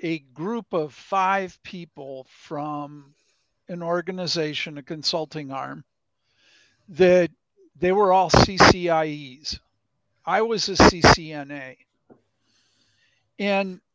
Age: 50-69